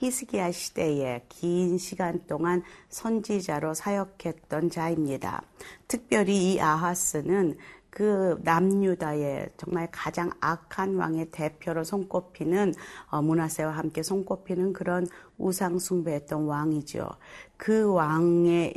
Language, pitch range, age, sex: Korean, 160-195 Hz, 40-59, female